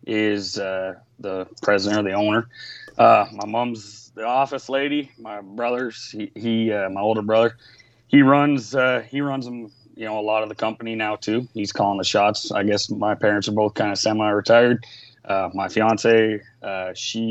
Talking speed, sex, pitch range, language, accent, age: 185 wpm, male, 105-125 Hz, English, American, 30-49